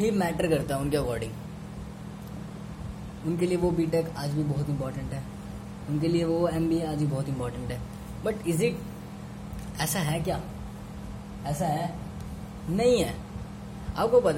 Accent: native